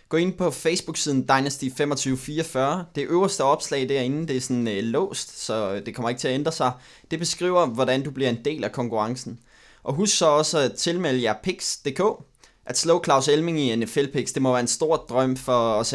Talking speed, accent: 200 wpm, native